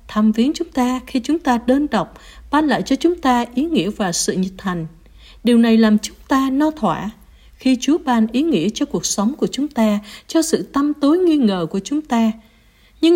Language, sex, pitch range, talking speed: Vietnamese, female, 205-275 Hz, 220 wpm